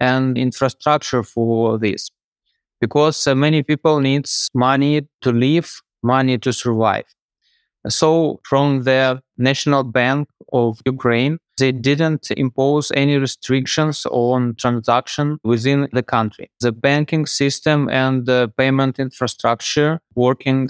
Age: 20-39